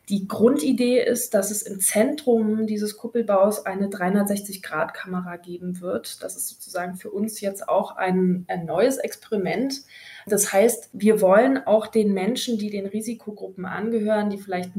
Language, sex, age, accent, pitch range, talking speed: German, female, 20-39, German, 190-225 Hz, 150 wpm